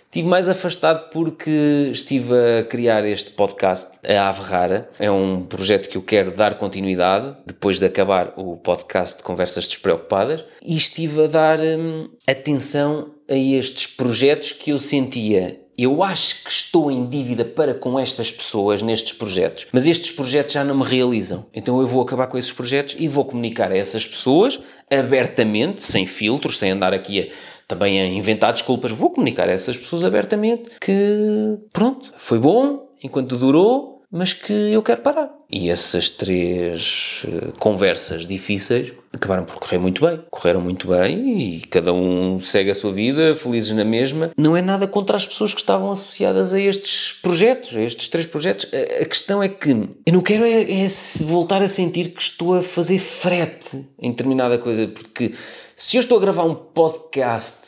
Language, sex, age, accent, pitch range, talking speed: Portuguese, male, 20-39, Portuguese, 110-175 Hz, 175 wpm